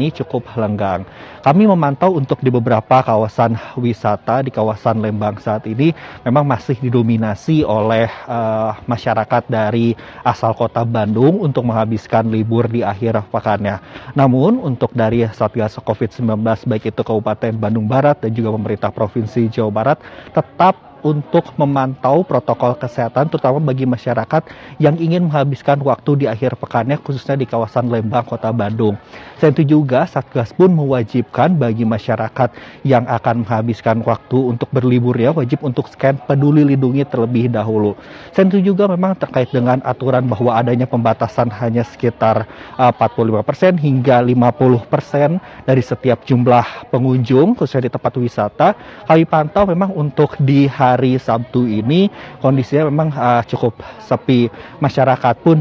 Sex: male